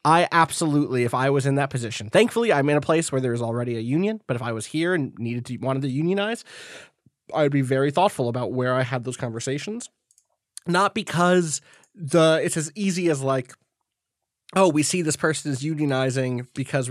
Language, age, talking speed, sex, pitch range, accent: English, 20-39, 200 wpm, male, 125-155 Hz, American